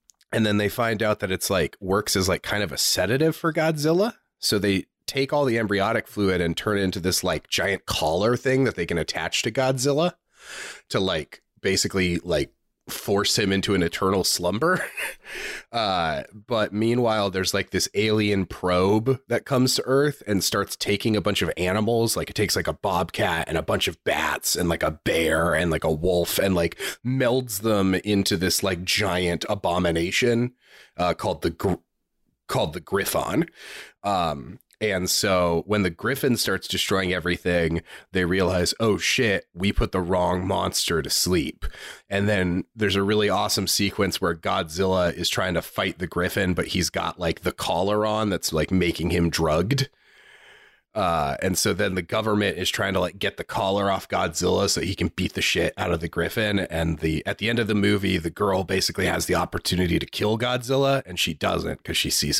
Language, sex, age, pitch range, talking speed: English, male, 30-49, 90-110 Hz, 190 wpm